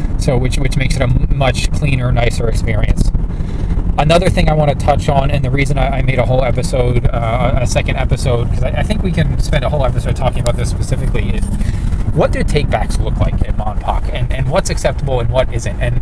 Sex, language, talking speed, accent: male, English, 225 wpm, American